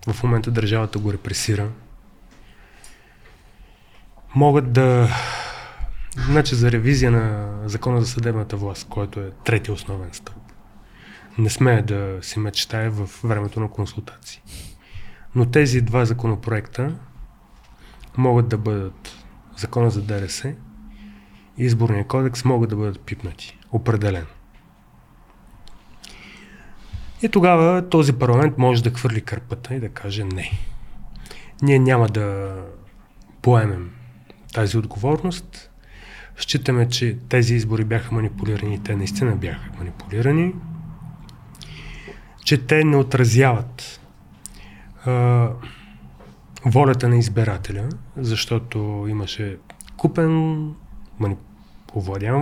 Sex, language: male, Bulgarian